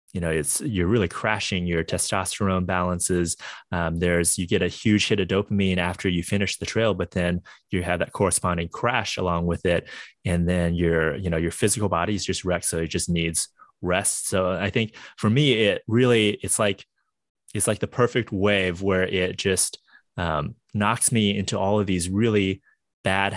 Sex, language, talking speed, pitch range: male, English, 195 wpm, 85-100 Hz